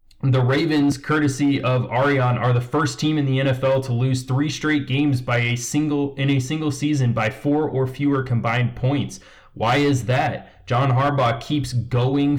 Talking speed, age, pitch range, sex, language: 180 wpm, 20-39, 115-135 Hz, male, English